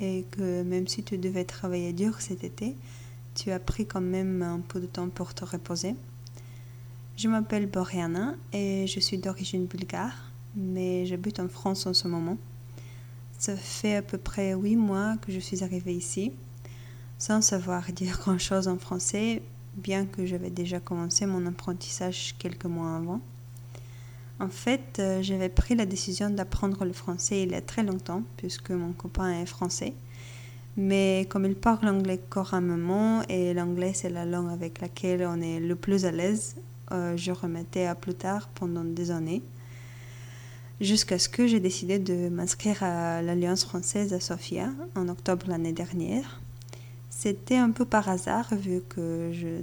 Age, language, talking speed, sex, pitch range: 20-39, French, 165 wpm, female, 165-190 Hz